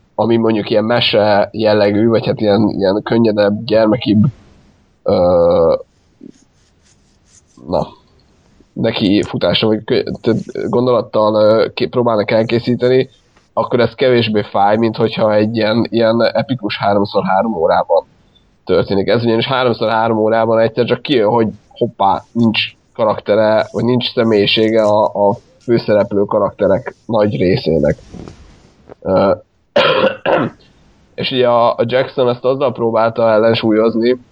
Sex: male